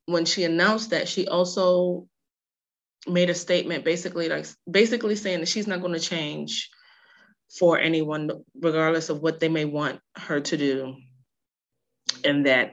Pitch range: 160-205 Hz